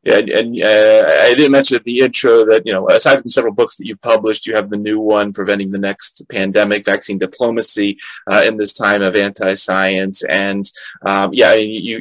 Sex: male